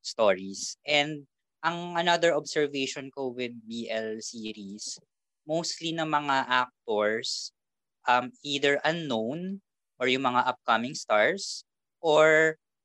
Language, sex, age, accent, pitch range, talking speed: English, female, 20-39, Filipino, 110-145 Hz, 105 wpm